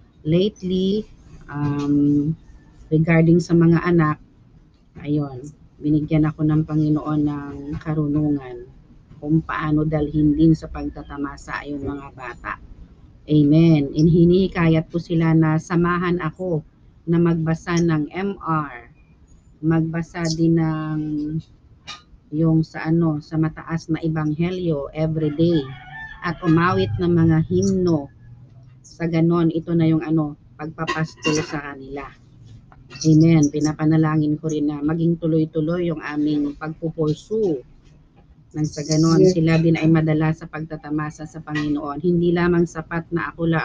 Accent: native